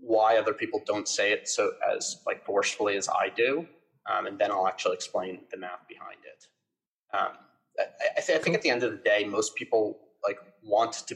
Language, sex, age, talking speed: English, male, 30-49, 215 wpm